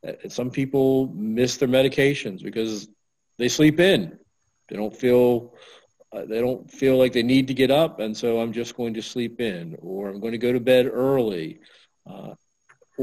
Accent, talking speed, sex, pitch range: American, 175 wpm, male, 110-130 Hz